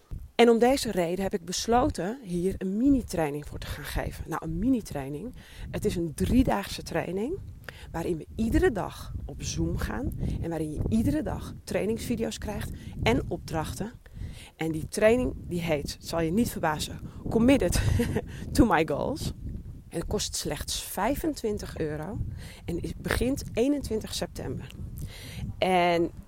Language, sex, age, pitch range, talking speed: Dutch, female, 30-49, 165-235 Hz, 145 wpm